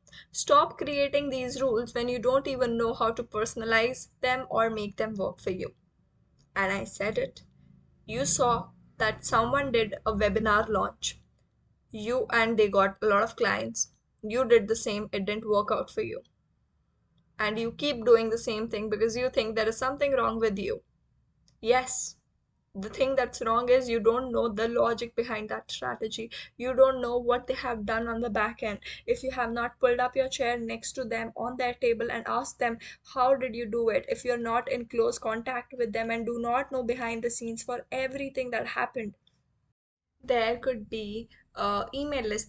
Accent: Indian